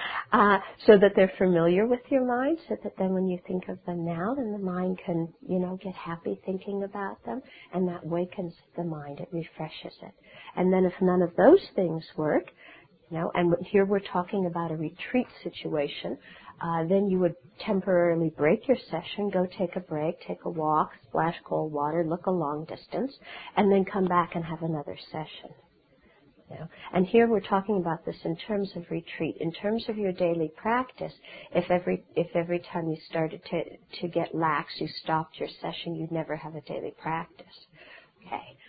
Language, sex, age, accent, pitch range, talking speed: English, female, 50-69, American, 165-195 Hz, 190 wpm